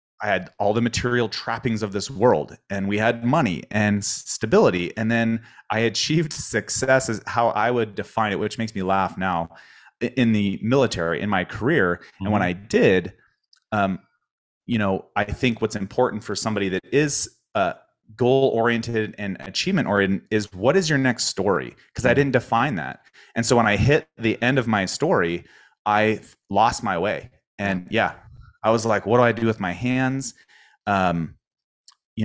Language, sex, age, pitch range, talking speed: English, male, 30-49, 100-120 Hz, 180 wpm